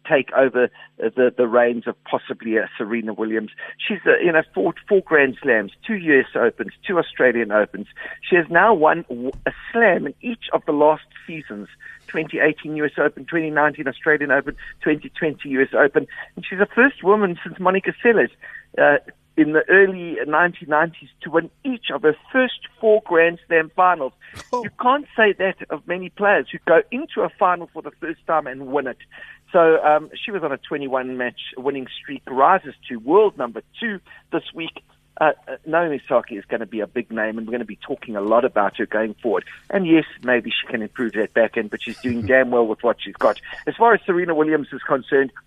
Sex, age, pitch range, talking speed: male, 50-69, 130-190 Hz, 195 wpm